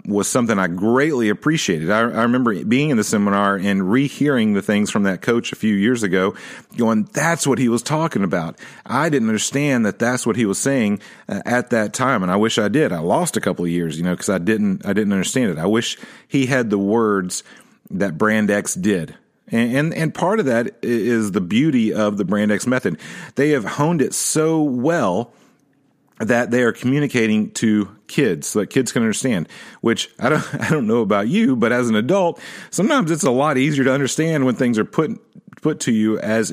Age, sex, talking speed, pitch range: 40-59, male, 215 wpm, 105-150 Hz